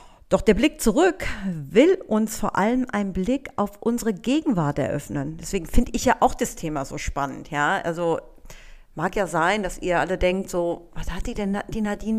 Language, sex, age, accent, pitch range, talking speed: German, female, 40-59, German, 170-240 Hz, 190 wpm